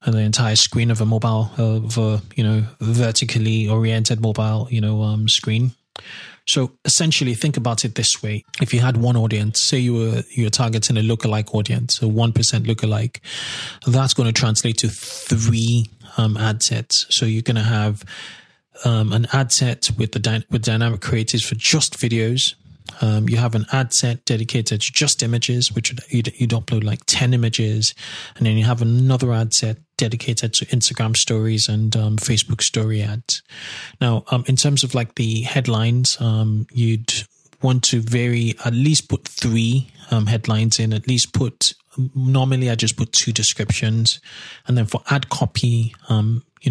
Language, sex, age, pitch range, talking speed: English, male, 20-39, 110-125 Hz, 175 wpm